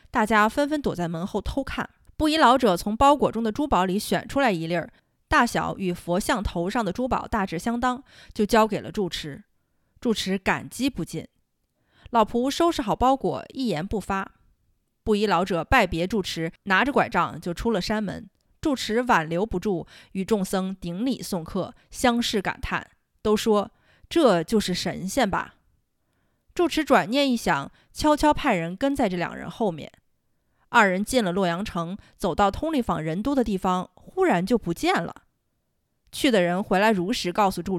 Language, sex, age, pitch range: Chinese, female, 20-39, 180-250 Hz